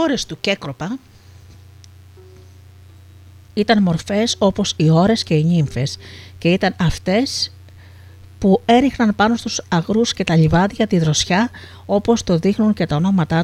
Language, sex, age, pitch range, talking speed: Greek, female, 50-69, 125-205 Hz, 130 wpm